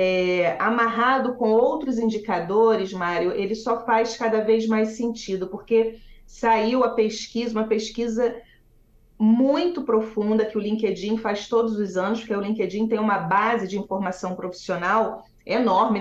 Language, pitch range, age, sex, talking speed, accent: Portuguese, 195-235 Hz, 30-49, female, 140 wpm, Brazilian